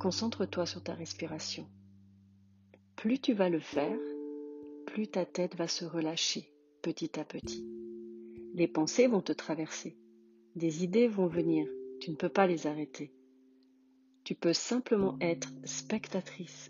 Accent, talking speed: French, 135 wpm